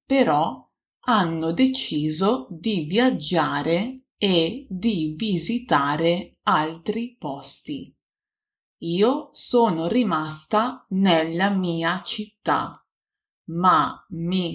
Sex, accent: female, native